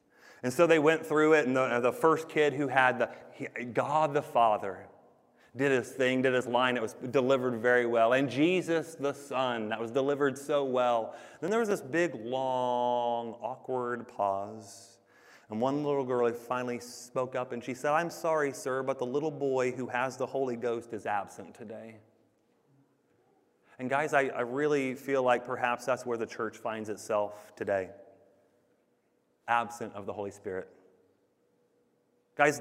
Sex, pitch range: male, 115-140 Hz